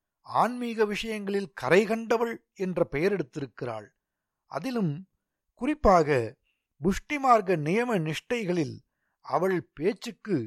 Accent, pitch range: native, 150-220 Hz